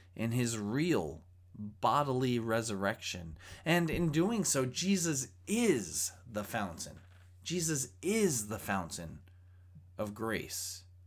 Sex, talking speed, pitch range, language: male, 105 wpm, 90-125 Hz, English